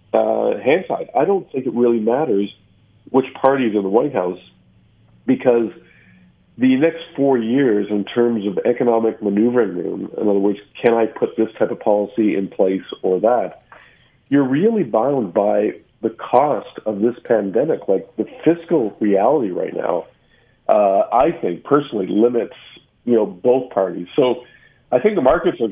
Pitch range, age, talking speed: 105-120 Hz, 50-69, 165 wpm